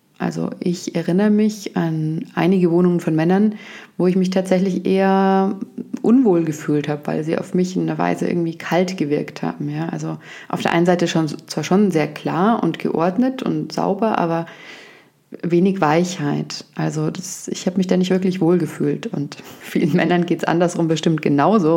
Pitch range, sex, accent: 155-190 Hz, female, German